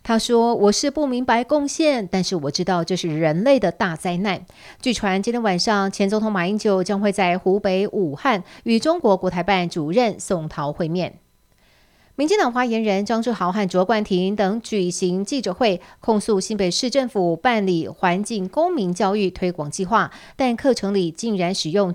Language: Chinese